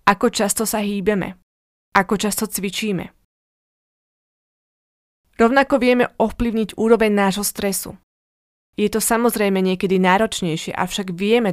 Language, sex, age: Slovak, female, 20-39